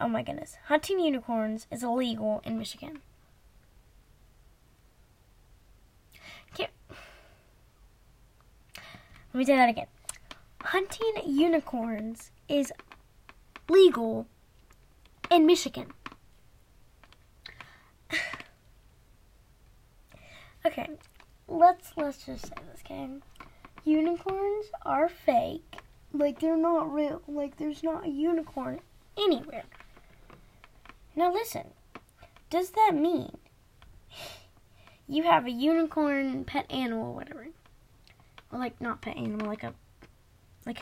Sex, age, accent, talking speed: female, 10-29, American, 90 wpm